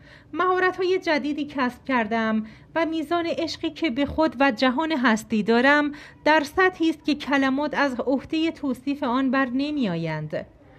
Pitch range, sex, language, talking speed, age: 230-310 Hz, female, Persian, 140 wpm, 40-59